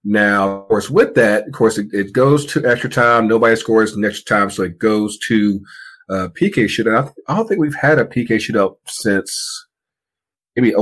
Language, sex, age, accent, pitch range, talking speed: English, male, 30-49, American, 95-130 Hz, 205 wpm